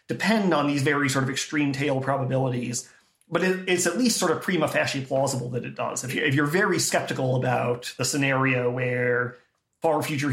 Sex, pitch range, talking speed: male, 130-155 Hz, 185 wpm